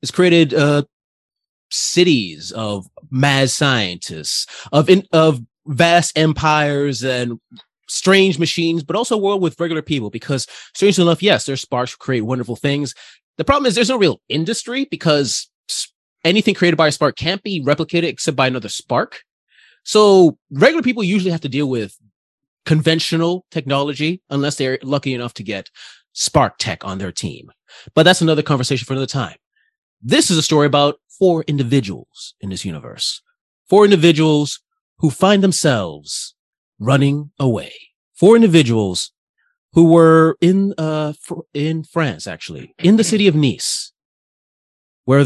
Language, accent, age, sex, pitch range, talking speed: English, American, 30-49, male, 130-170 Hz, 150 wpm